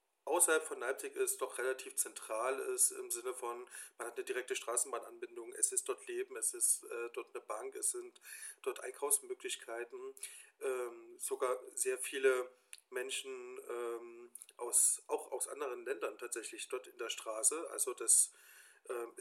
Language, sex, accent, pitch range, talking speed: German, male, German, 375-435 Hz, 155 wpm